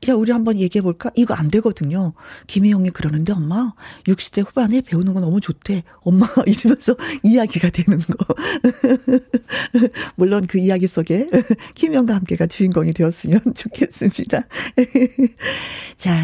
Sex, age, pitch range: female, 40-59, 170-255 Hz